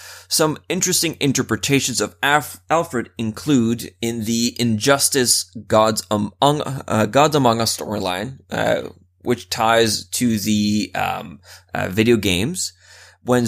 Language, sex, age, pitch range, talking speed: English, male, 20-39, 105-130 Hz, 100 wpm